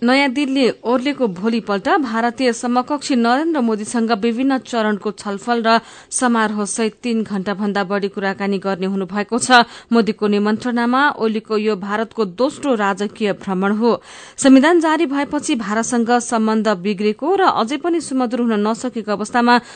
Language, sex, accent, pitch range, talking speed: English, female, Indian, 210-240 Hz, 135 wpm